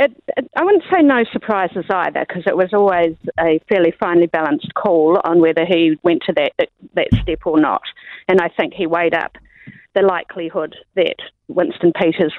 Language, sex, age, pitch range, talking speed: English, female, 40-59, 165-195 Hz, 185 wpm